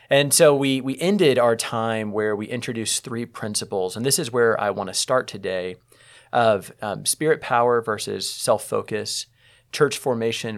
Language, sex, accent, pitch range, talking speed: English, male, American, 100-130 Hz, 165 wpm